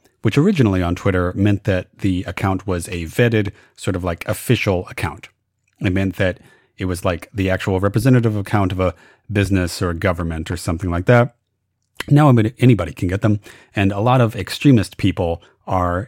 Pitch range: 90-115 Hz